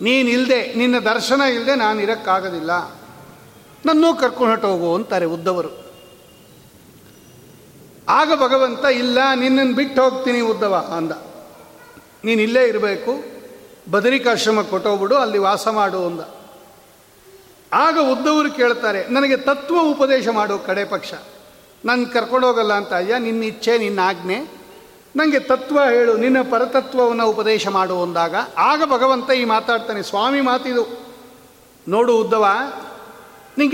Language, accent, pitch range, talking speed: Kannada, native, 225-270 Hz, 115 wpm